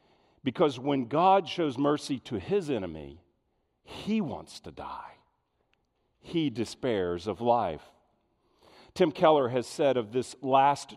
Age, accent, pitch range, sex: 50-69, American, 130-185 Hz, male